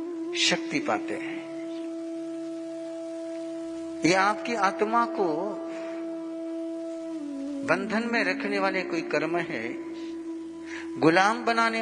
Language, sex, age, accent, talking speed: Hindi, male, 50-69, native, 80 wpm